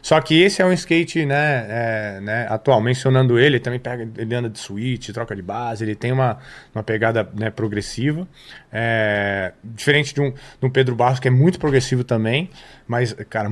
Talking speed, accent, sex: 190 wpm, Brazilian, male